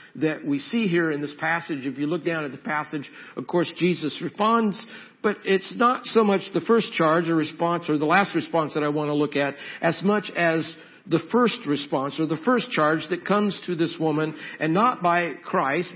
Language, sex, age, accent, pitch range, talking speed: English, male, 50-69, American, 170-230 Hz, 215 wpm